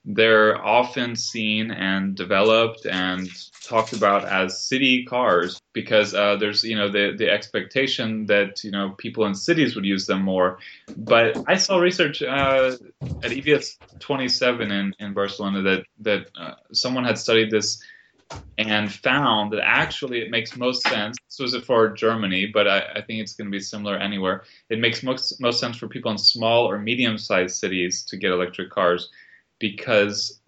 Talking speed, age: 170 wpm, 20-39